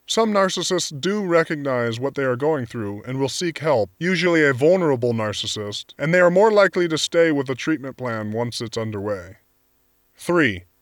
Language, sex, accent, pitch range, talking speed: English, male, American, 125-170 Hz, 175 wpm